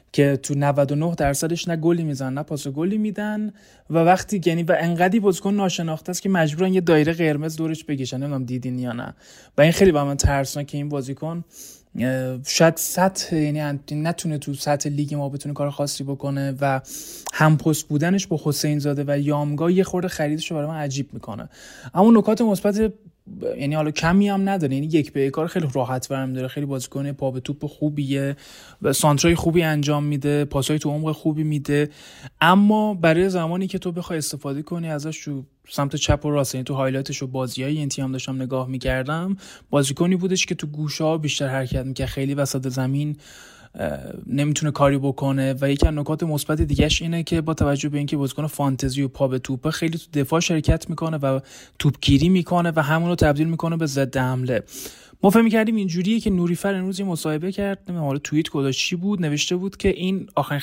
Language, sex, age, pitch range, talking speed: Persian, male, 20-39, 140-170 Hz, 190 wpm